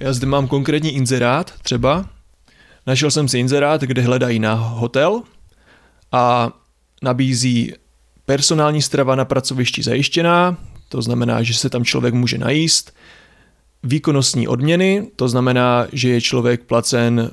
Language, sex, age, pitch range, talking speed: Czech, male, 30-49, 115-140 Hz, 130 wpm